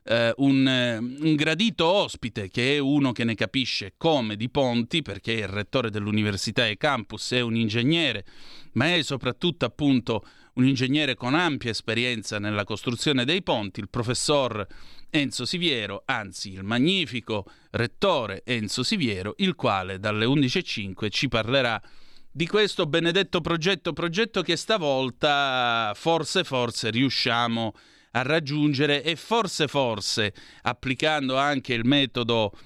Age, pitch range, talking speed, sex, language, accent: 30-49, 115-150 Hz, 130 wpm, male, Italian, native